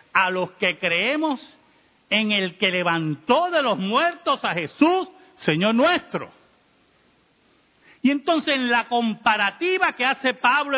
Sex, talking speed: male, 130 wpm